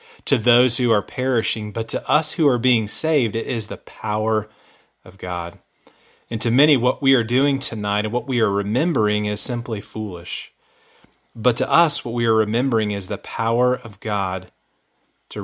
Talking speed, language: 185 wpm, English